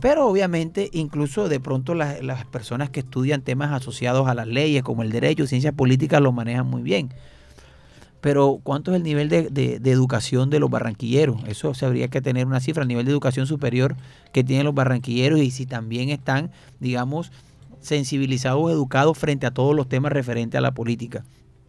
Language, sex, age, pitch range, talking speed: Spanish, male, 30-49, 125-150 Hz, 190 wpm